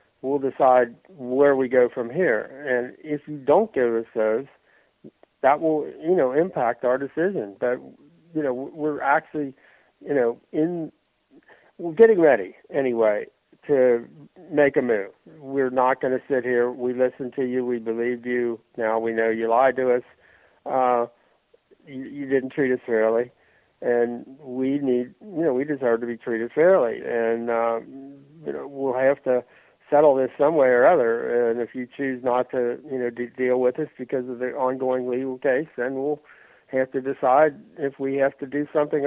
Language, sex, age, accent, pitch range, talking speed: English, male, 60-79, American, 120-145 Hz, 180 wpm